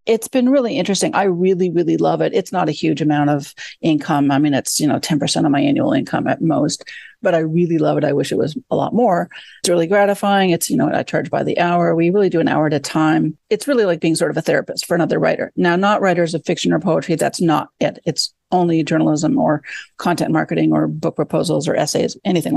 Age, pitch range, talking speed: 40-59, 165-200 Hz, 245 wpm